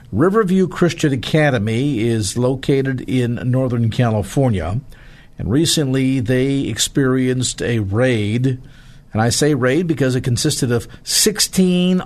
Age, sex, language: 50-69, male, English